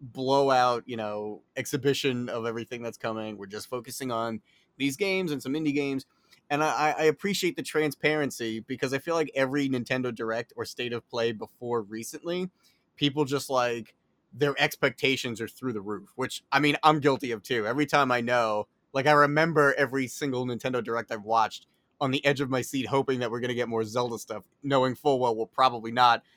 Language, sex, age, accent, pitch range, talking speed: English, male, 30-49, American, 115-145 Hz, 200 wpm